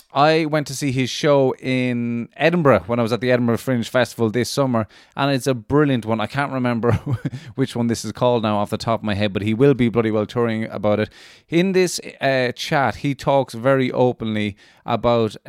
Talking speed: 215 wpm